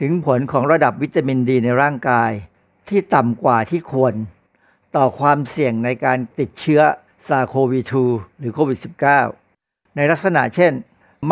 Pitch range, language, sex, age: 120-155 Hz, Thai, male, 60-79